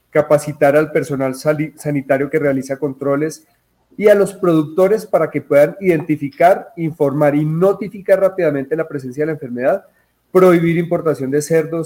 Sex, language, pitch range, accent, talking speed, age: male, Spanish, 140-170 Hz, Colombian, 145 wpm, 30-49